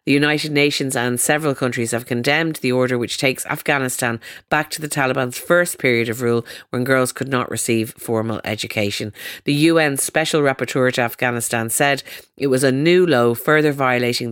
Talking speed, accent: 175 wpm, Irish